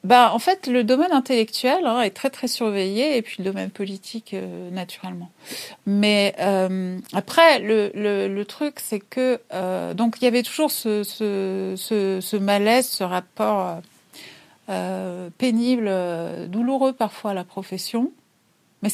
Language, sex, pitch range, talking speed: French, female, 185-235 Hz, 155 wpm